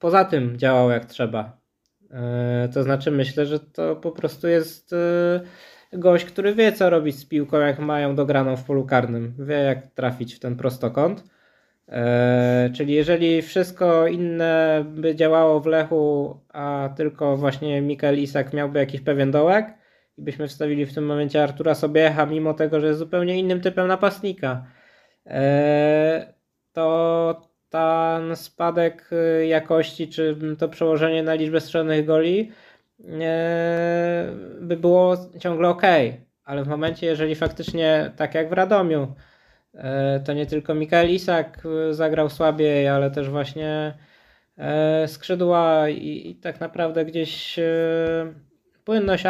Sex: male